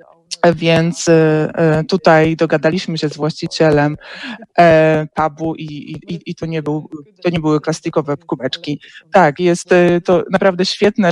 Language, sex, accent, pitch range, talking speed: Polish, male, native, 160-200 Hz, 135 wpm